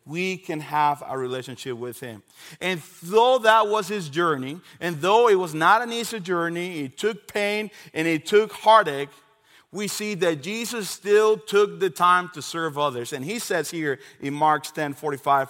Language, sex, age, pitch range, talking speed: English, male, 40-59, 130-170 Hz, 180 wpm